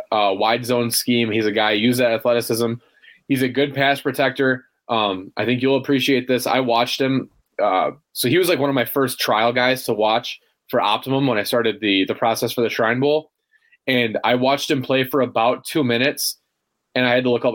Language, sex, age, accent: English, male, 20-39, American